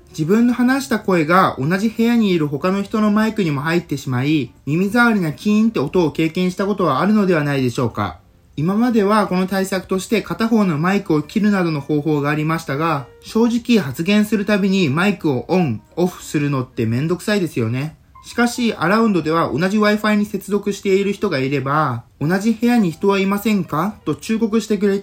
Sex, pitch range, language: male, 150-210 Hz, Japanese